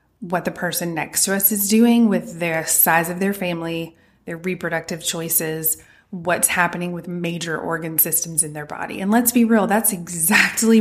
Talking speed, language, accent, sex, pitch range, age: 180 wpm, English, American, female, 170-210 Hz, 20-39